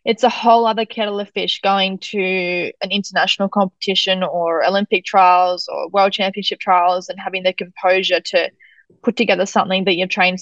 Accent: Australian